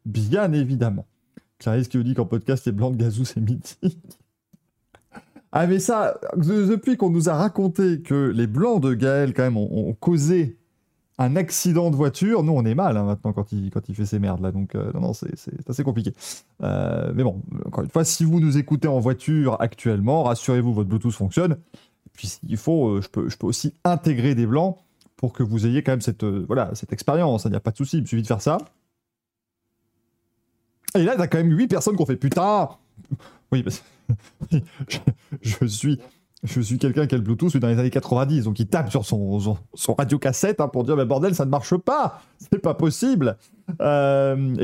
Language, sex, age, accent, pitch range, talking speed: French, male, 20-39, French, 115-160 Hz, 220 wpm